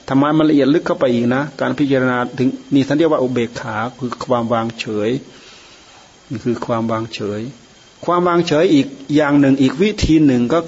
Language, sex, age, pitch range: Thai, male, 30-49, 120-155 Hz